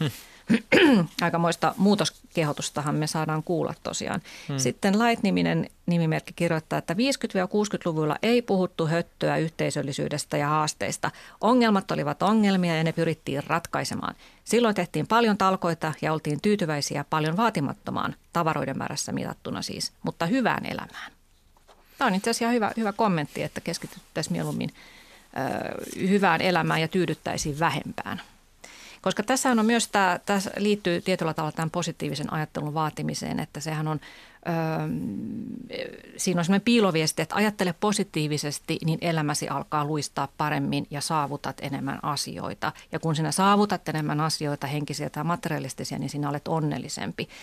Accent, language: native, Finnish